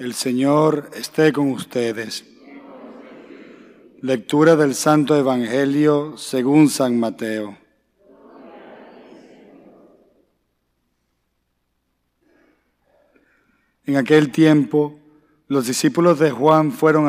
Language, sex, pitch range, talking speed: English, male, 130-150 Hz, 70 wpm